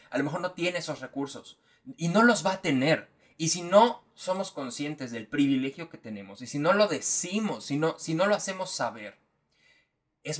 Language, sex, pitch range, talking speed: Spanish, male, 130-175 Hz, 200 wpm